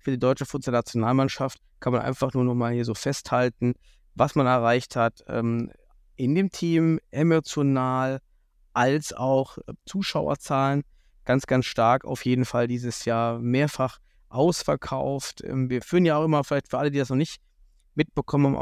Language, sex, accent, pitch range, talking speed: German, male, German, 120-145 Hz, 160 wpm